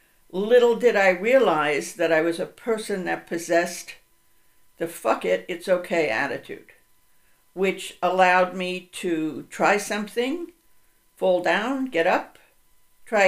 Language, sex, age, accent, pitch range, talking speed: English, female, 60-79, American, 185-245 Hz, 115 wpm